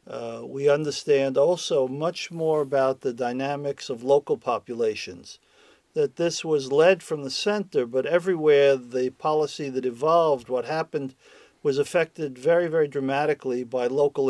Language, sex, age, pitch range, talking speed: English, male, 50-69, 135-160 Hz, 145 wpm